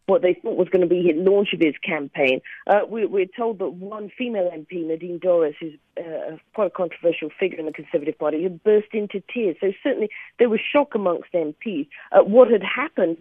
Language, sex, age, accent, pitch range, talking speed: English, female, 40-59, British, 170-210 Hz, 215 wpm